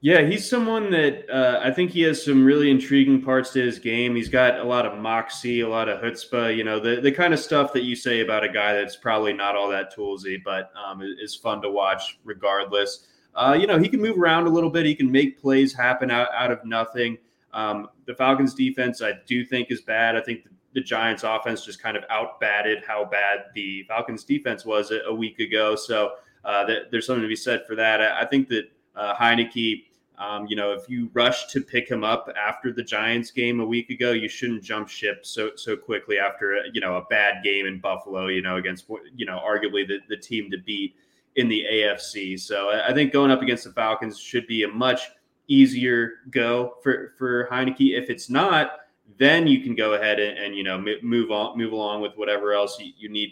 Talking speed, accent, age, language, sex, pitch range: 230 wpm, American, 20-39, English, male, 105-130 Hz